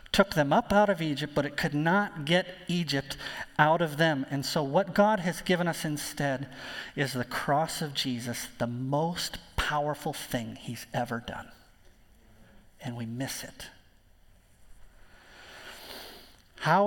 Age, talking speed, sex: 40-59, 140 wpm, male